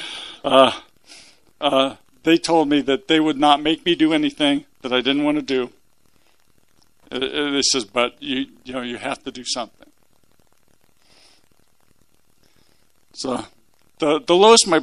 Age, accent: 50-69, American